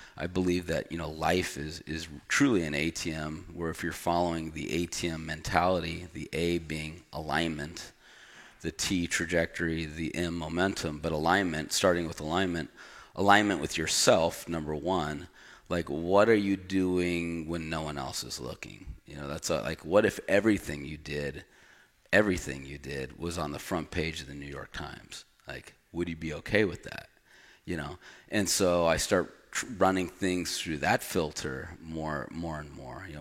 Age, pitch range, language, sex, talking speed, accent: 30-49, 75-85 Hz, English, male, 170 wpm, American